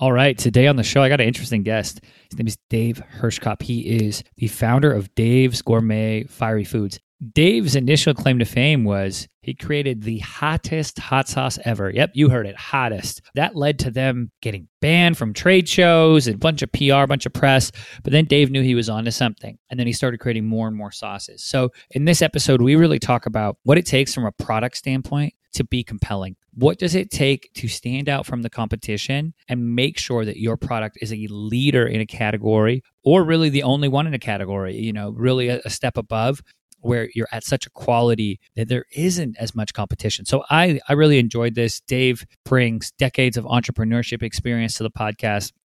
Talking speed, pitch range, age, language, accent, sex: 210 wpm, 110-135 Hz, 30-49, English, American, male